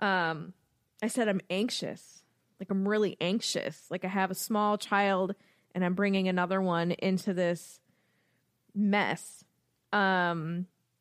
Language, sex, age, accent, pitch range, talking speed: English, female, 20-39, American, 185-220 Hz, 130 wpm